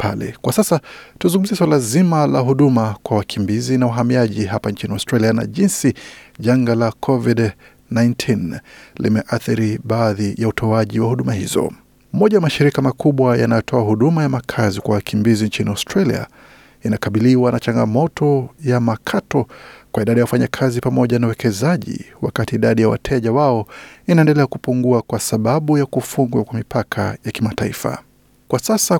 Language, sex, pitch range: Swahili, male, 115-140 Hz